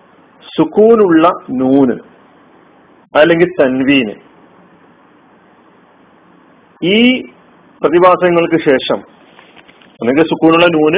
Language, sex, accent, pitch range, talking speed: Malayalam, male, native, 135-185 Hz, 55 wpm